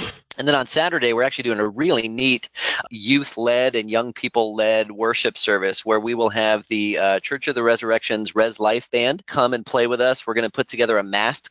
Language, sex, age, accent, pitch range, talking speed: English, male, 30-49, American, 110-120 Hz, 215 wpm